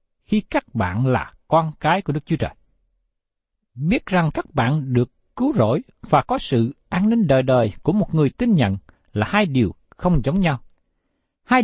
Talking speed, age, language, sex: 185 wpm, 60-79, Vietnamese, male